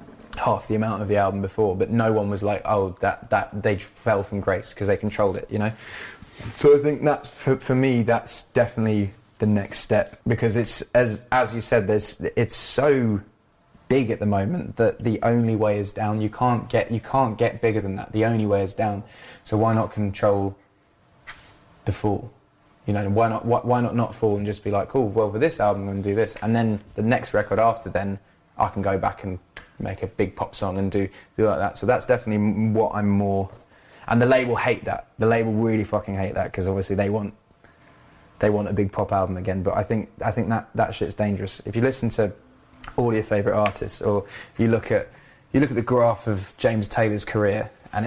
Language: English